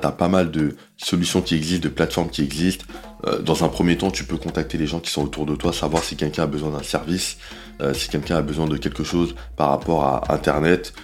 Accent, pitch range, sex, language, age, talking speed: French, 75-95 Hz, male, French, 20-39, 235 wpm